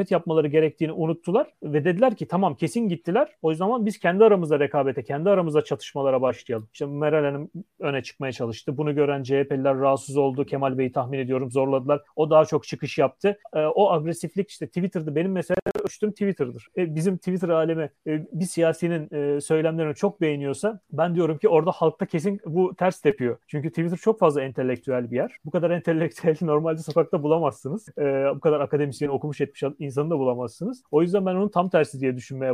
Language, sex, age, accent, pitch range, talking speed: Turkish, male, 40-59, native, 140-185 Hz, 185 wpm